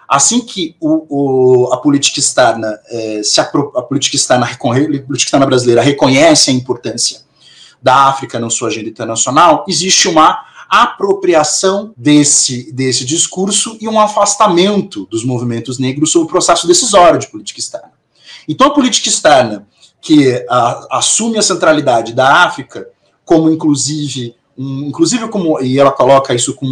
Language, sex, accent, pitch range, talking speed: Portuguese, male, Brazilian, 125-180 Hz, 145 wpm